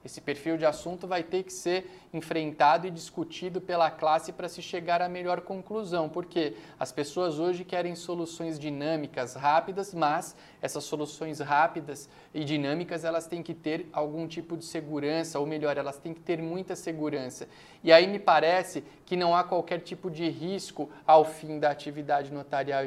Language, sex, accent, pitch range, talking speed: Portuguese, male, Brazilian, 155-180 Hz, 170 wpm